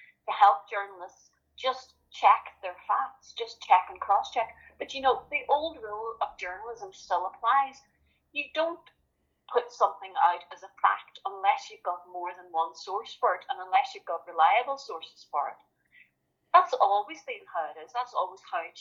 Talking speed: 180 wpm